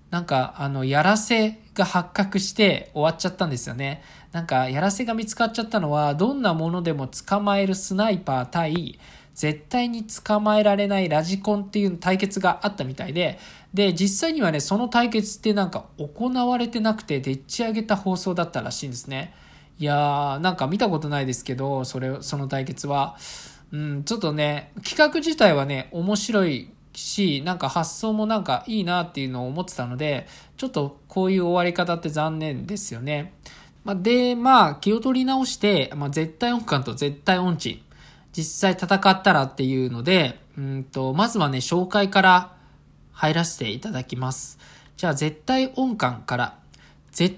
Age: 20-39